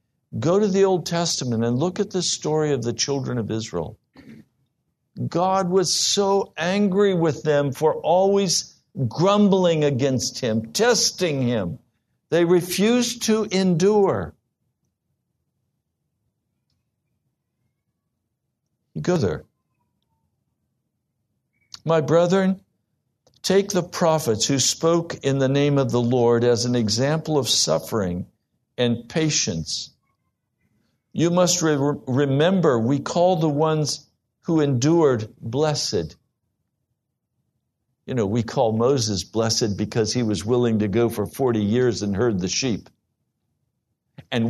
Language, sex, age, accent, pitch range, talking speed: English, male, 60-79, American, 115-170 Hz, 115 wpm